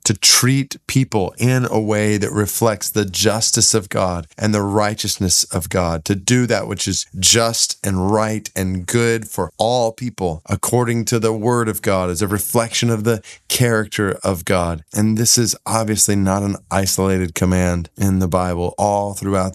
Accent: American